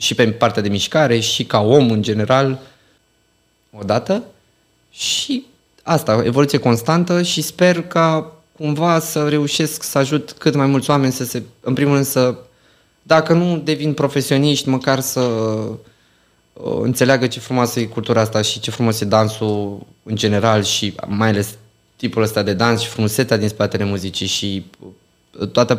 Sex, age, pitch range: male, 20-39, 100-125 Hz